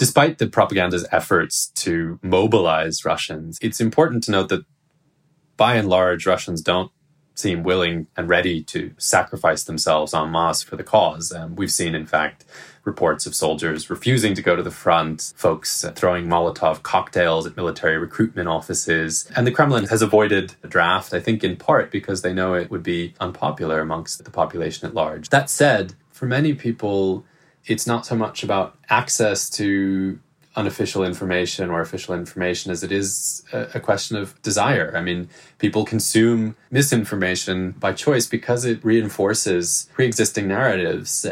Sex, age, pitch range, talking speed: male, 20-39, 85-115 Hz, 160 wpm